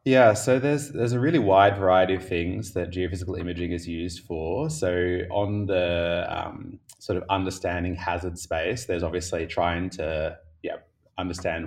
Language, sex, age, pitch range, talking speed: English, male, 20-39, 85-105 Hz, 160 wpm